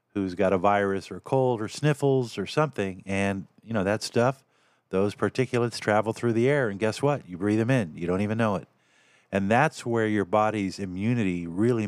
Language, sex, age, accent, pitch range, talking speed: English, male, 50-69, American, 100-125 Hz, 200 wpm